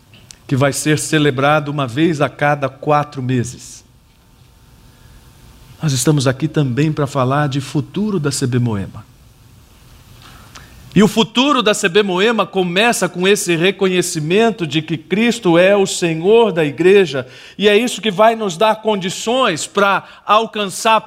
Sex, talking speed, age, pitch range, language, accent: male, 140 wpm, 50-69, 130-190 Hz, Portuguese, Brazilian